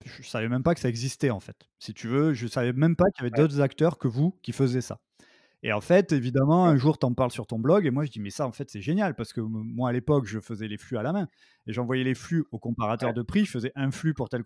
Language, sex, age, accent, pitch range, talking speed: French, male, 20-39, French, 120-155 Hz, 315 wpm